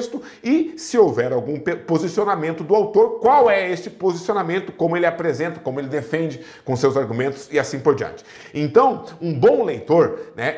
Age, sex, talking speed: 50-69, male, 165 wpm